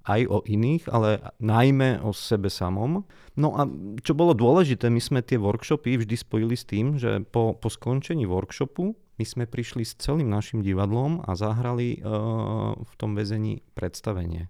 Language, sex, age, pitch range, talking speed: Slovak, male, 30-49, 105-130 Hz, 165 wpm